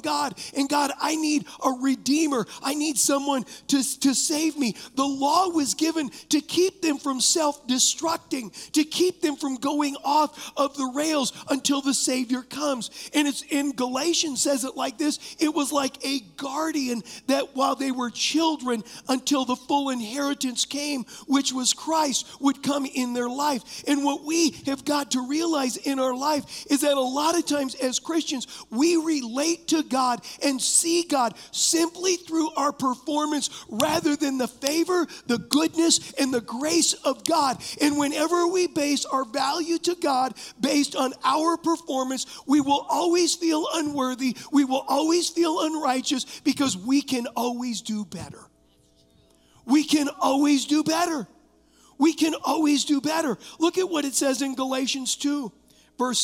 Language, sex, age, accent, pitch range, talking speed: English, male, 40-59, American, 260-305 Hz, 165 wpm